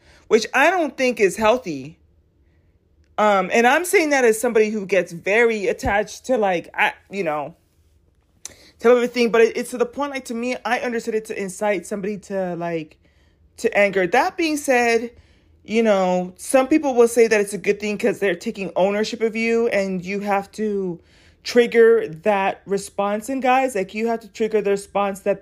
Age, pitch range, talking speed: 30-49, 160-235 Hz, 190 wpm